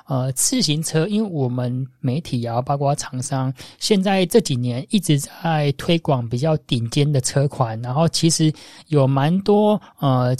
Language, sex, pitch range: Chinese, male, 130-165 Hz